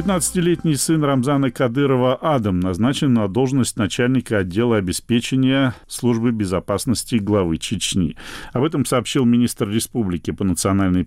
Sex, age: male, 40-59